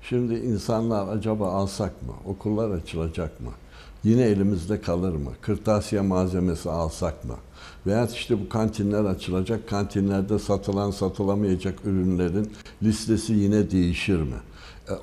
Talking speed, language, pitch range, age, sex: 120 wpm, Turkish, 85-110 Hz, 60-79, male